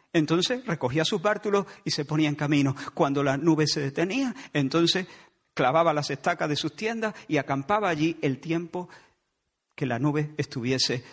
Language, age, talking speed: Spanish, 50-69, 160 wpm